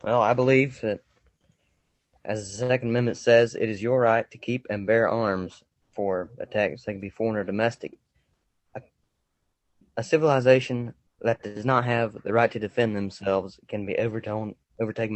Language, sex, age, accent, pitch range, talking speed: English, male, 20-39, American, 100-120 Hz, 160 wpm